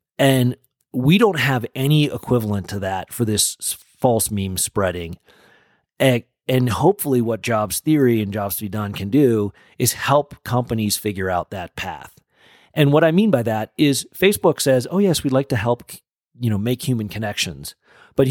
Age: 40-59